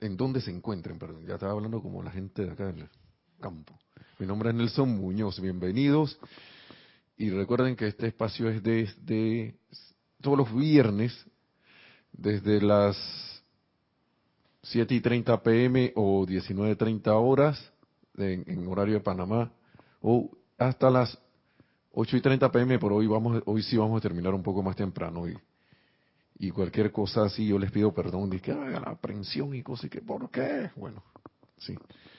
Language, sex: Spanish, male